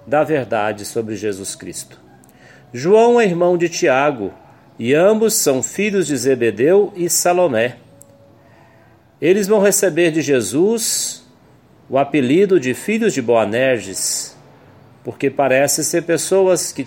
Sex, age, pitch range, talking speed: male, 40-59, 120-160 Hz, 120 wpm